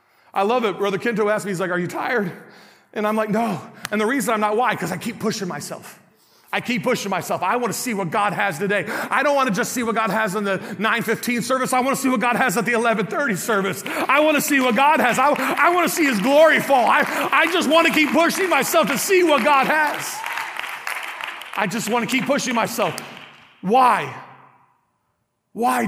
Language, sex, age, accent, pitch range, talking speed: English, male, 40-59, American, 190-240 Hz, 230 wpm